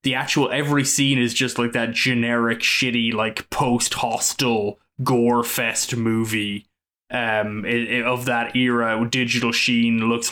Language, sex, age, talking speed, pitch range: English, male, 20-39, 140 wpm, 115-130 Hz